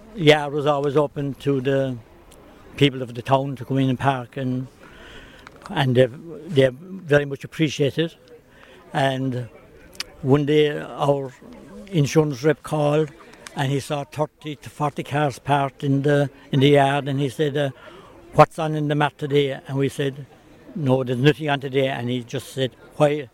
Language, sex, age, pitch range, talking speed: English, male, 60-79, 130-150 Hz, 175 wpm